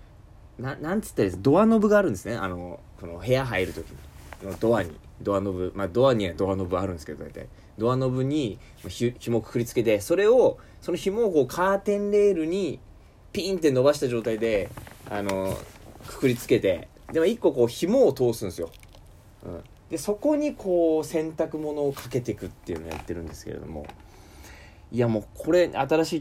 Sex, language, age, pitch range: male, Japanese, 20-39, 95-160 Hz